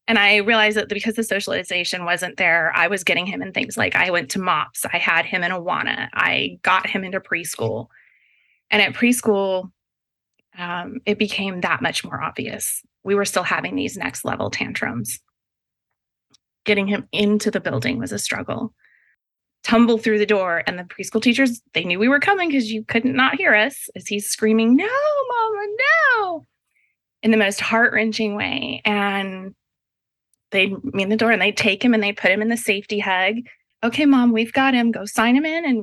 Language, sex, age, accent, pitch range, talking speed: English, female, 20-39, American, 185-225 Hz, 190 wpm